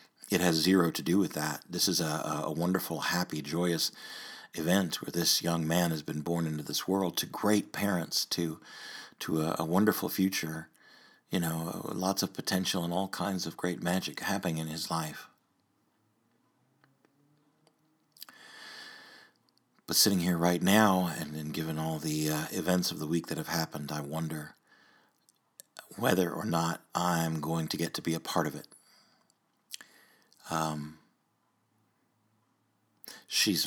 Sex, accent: male, American